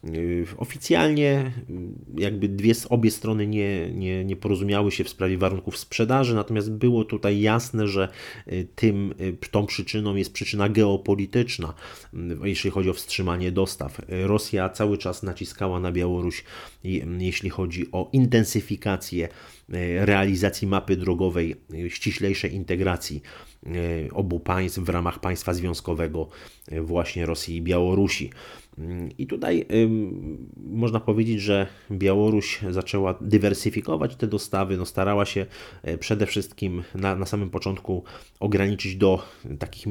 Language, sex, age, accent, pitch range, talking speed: Polish, male, 30-49, native, 90-105 Hz, 110 wpm